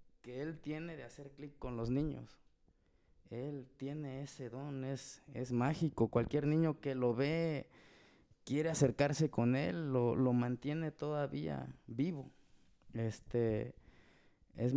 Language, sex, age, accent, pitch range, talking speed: Spanish, male, 20-39, Mexican, 115-140 Hz, 130 wpm